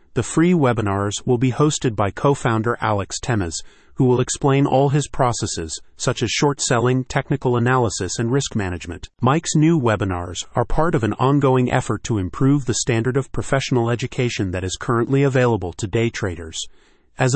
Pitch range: 110-135 Hz